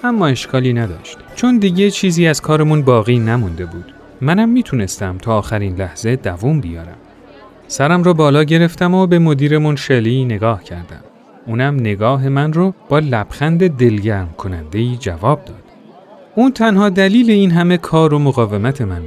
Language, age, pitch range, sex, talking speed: Persian, 30-49, 115-175 Hz, male, 150 wpm